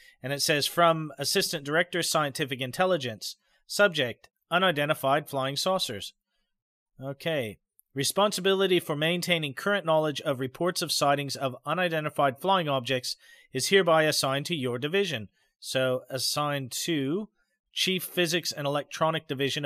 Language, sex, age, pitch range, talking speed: English, male, 40-59, 135-175 Hz, 120 wpm